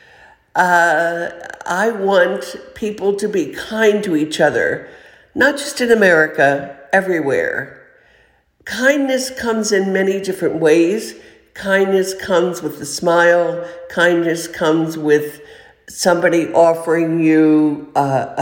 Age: 60-79